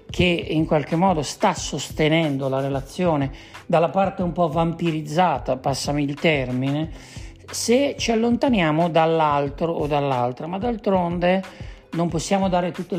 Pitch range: 150-185 Hz